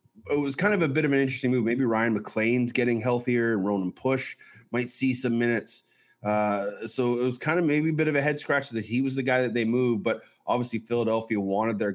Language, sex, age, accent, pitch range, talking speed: English, male, 30-49, American, 100-120 Hz, 240 wpm